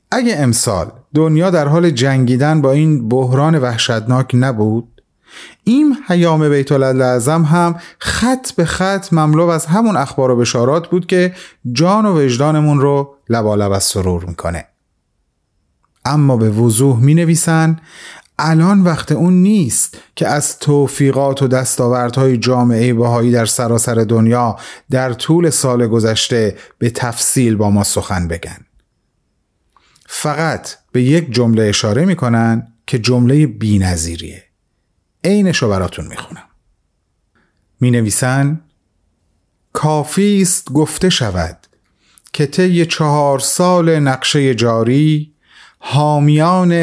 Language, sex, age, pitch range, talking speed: Persian, male, 30-49, 120-160 Hz, 110 wpm